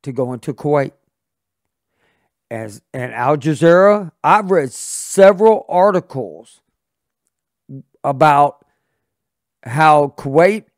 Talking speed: 85 wpm